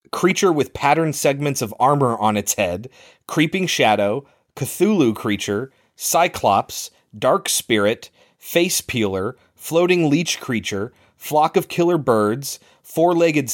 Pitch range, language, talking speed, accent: 105-155 Hz, English, 115 wpm, American